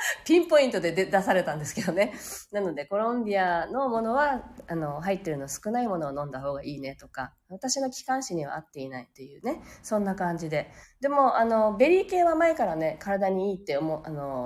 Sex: female